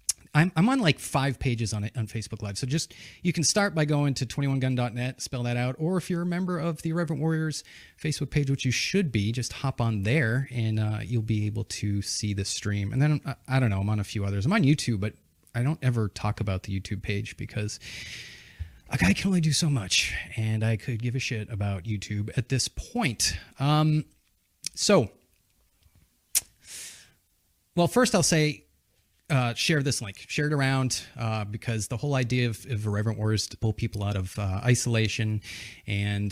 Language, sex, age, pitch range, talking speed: English, male, 30-49, 105-140 Hz, 205 wpm